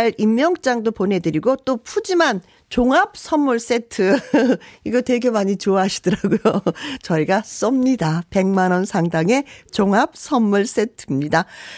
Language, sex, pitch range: Korean, female, 190-275 Hz